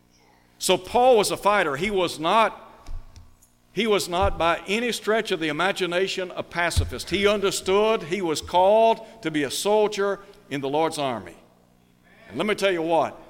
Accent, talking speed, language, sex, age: American, 170 wpm, English, male, 60-79